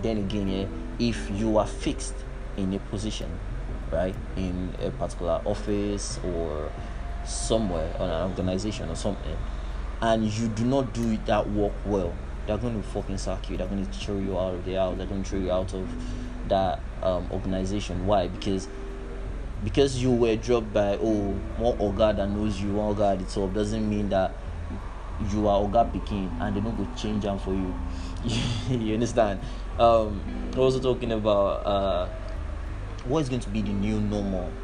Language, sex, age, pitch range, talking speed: English, male, 20-39, 95-115 Hz, 175 wpm